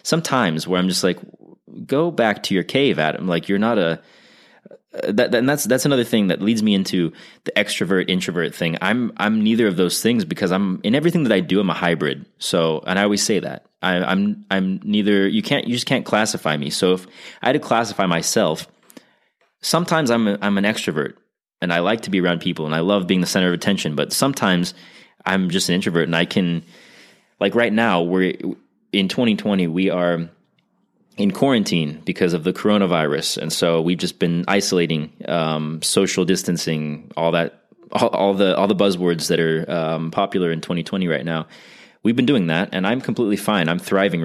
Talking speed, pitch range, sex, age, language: 195 wpm, 85-100 Hz, male, 20-39, English